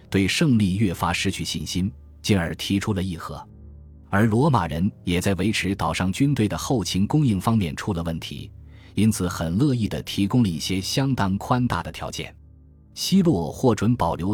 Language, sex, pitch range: Chinese, male, 85-110 Hz